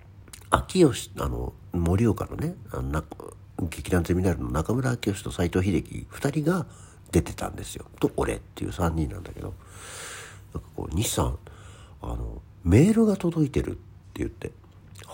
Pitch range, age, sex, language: 90-110 Hz, 60-79, male, Japanese